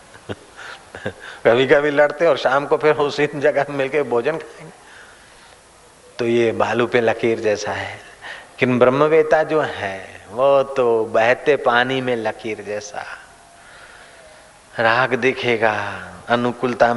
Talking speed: 115 wpm